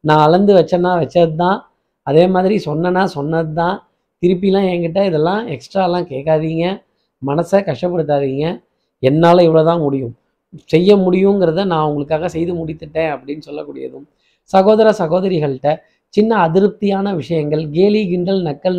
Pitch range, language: 160-190 Hz, Tamil